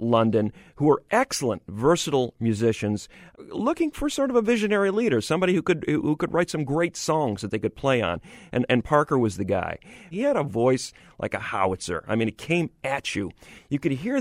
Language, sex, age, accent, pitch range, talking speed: English, male, 40-59, American, 105-150 Hz, 205 wpm